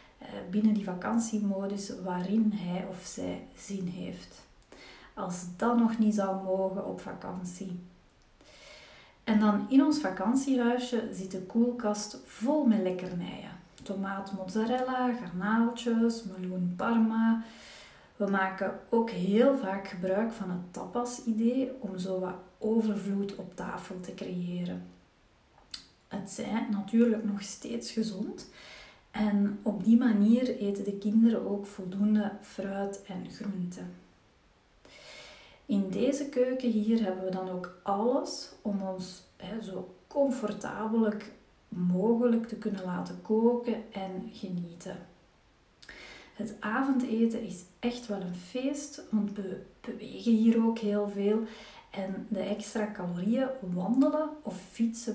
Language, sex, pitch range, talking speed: Dutch, female, 190-230 Hz, 120 wpm